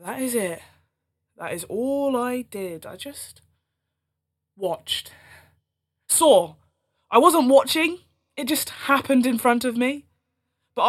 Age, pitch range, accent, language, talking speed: 20-39, 180-265 Hz, British, English, 130 wpm